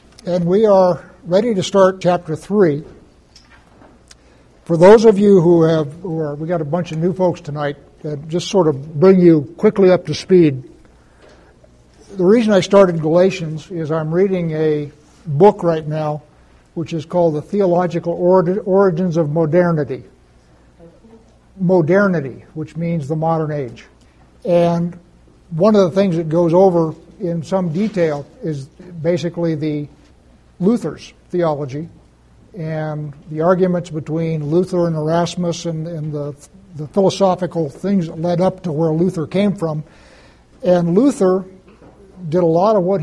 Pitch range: 155-185 Hz